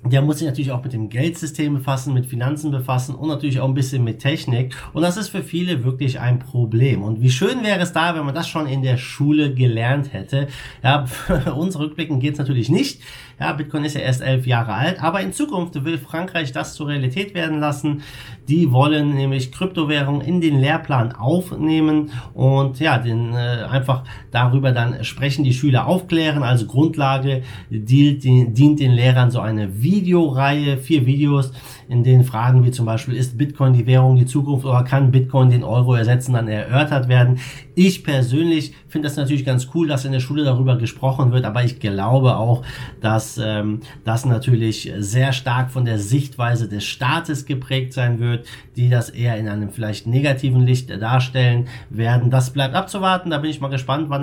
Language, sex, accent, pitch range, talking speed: German, male, German, 125-145 Hz, 190 wpm